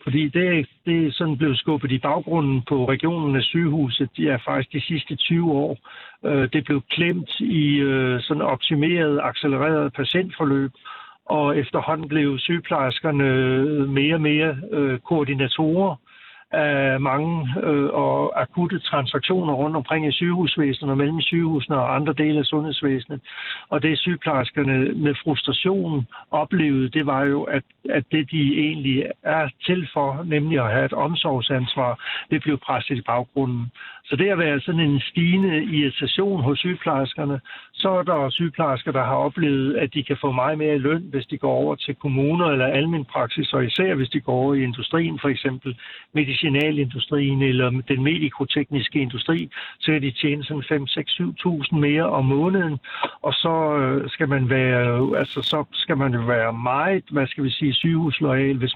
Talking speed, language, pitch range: 155 wpm, Danish, 135-155 Hz